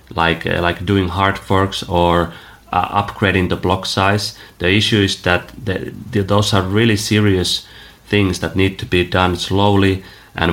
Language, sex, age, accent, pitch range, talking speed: English, male, 30-49, Finnish, 90-105 Hz, 170 wpm